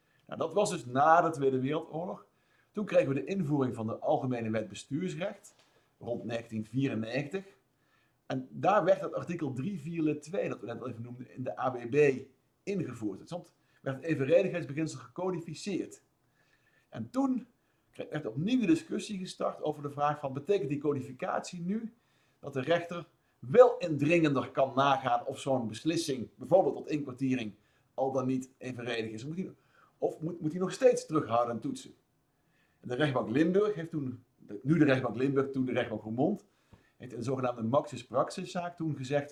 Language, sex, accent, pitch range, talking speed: Dutch, male, Dutch, 125-175 Hz, 160 wpm